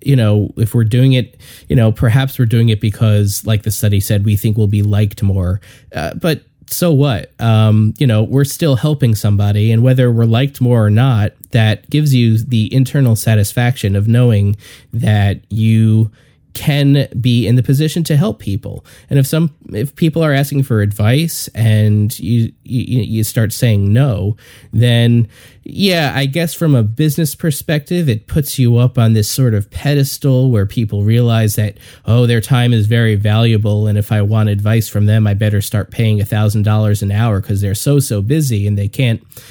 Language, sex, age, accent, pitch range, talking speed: English, male, 20-39, American, 105-130 Hz, 190 wpm